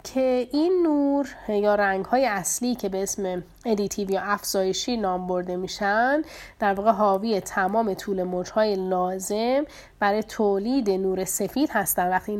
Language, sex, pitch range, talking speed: Persian, female, 195-245 Hz, 140 wpm